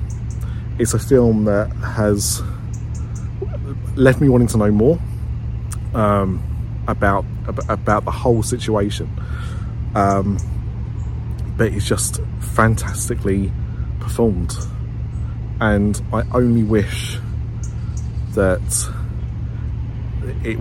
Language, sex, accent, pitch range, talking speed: English, male, British, 105-115 Hz, 85 wpm